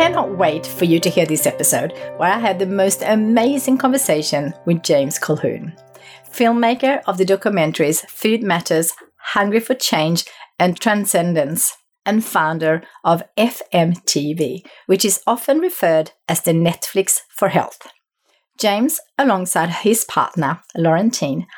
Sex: female